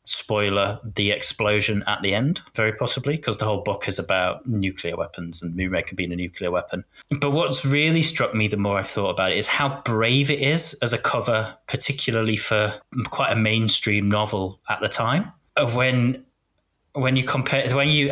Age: 20-39